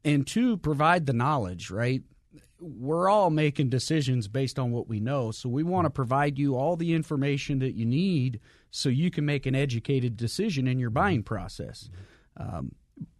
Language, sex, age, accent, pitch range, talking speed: English, male, 40-59, American, 120-145 Hz, 175 wpm